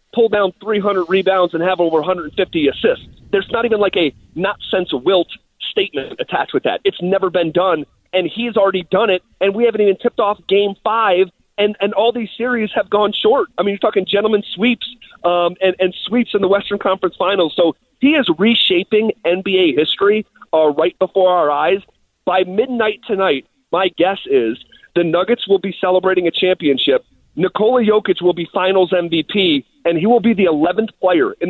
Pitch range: 175-225 Hz